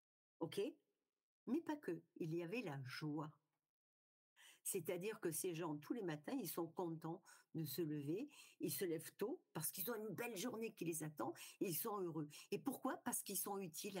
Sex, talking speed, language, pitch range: female, 190 wpm, French, 165-245 Hz